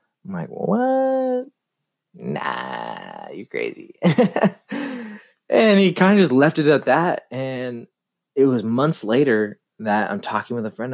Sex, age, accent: male, 20-39, American